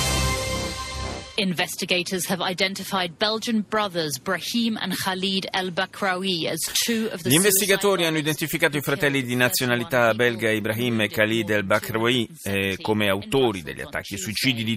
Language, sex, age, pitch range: Italian, male, 30-49, 105-140 Hz